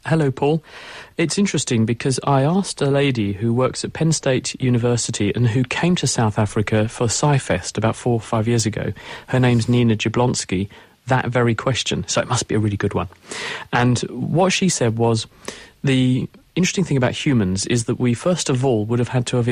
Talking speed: 200 wpm